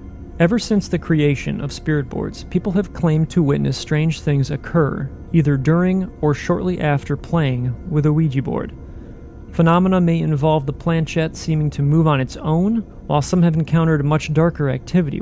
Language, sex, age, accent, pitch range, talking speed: English, male, 30-49, American, 145-175 Hz, 170 wpm